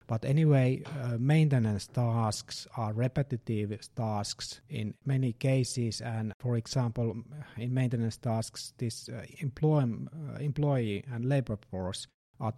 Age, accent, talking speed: 50-69, Finnish, 120 wpm